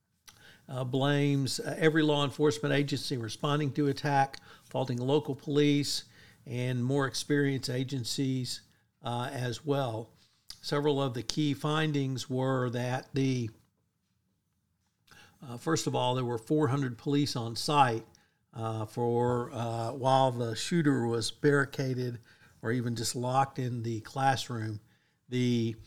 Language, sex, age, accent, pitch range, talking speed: English, male, 60-79, American, 115-140 Hz, 125 wpm